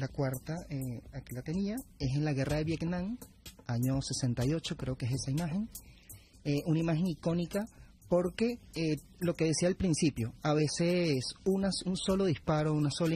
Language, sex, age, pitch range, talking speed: Spanish, male, 30-49, 135-170 Hz, 170 wpm